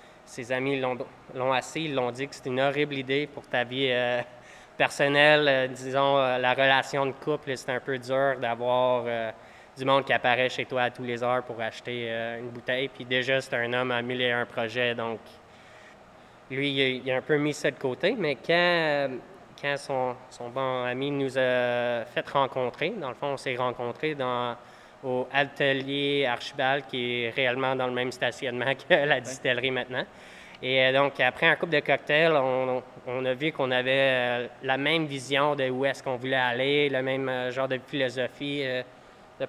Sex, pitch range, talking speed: male, 125-140 Hz, 195 wpm